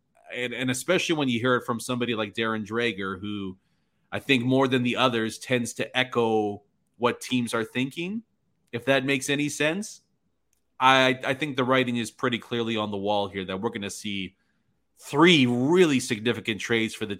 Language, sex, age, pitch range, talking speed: English, male, 30-49, 105-130 Hz, 190 wpm